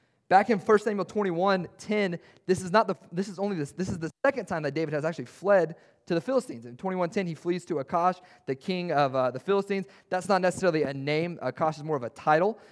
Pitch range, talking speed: 150-190 Hz, 235 wpm